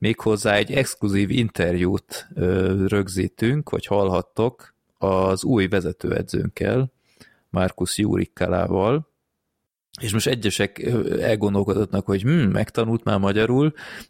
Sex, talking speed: male, 90 wpm